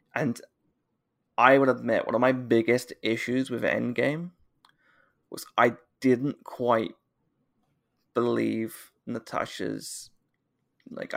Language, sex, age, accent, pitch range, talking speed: English, male, 20-39, British, 120-135 Hz, 95 wpm